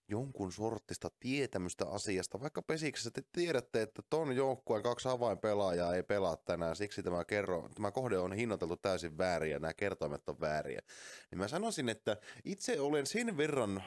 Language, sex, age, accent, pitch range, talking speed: Finnish, male, 30-49, native, 90-120 Hz, 160 wpm